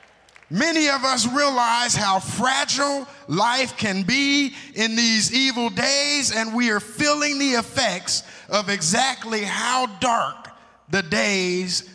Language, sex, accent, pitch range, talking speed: English, male, American, 195-250 Hz, 125 wpm